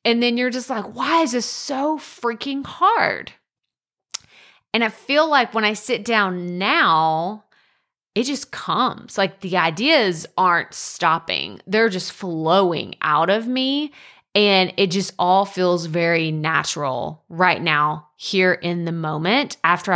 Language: English